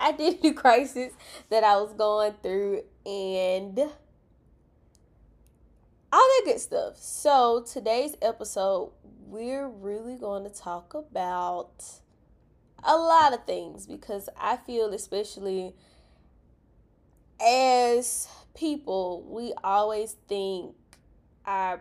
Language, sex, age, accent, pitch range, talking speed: English, female, 10-29, American, 190-255 Hz, 100 wpm